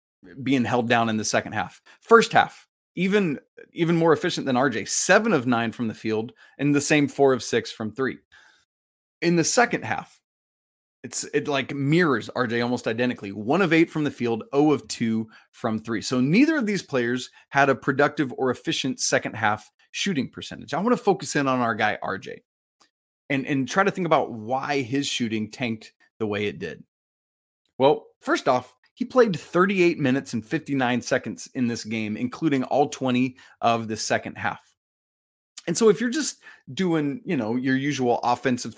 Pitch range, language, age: 120-155 Hz, English, 20-39